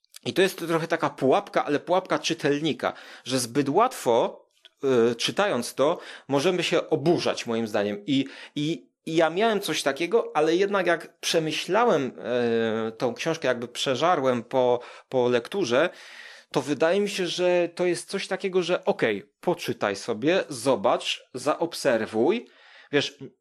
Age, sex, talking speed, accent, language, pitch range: 30-49, male, 135 wpm, native, Polish, 135-180 Hz